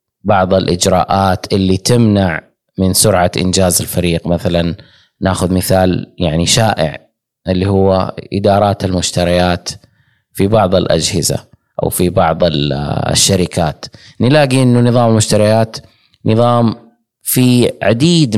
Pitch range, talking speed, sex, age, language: 90-115 Hz, 100 wpm, male, 20-39, Arabic